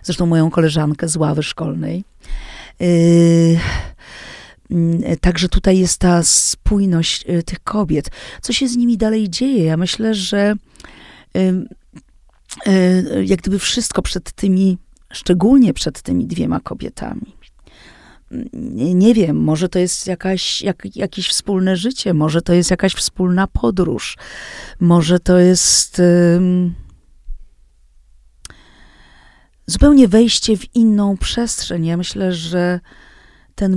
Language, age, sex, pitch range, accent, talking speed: Polish, 40-59, female, 170-205 Hz, native, 105 wpm